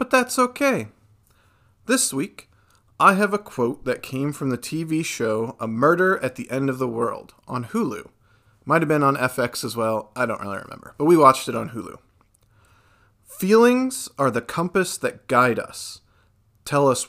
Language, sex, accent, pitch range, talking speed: English, male, American, 110-140 Hz, 180 wpm